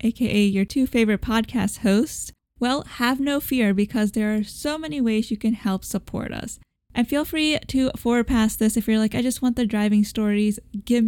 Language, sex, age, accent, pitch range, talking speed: English, female, 10-29, American, 205-240 Hz, 205 wpm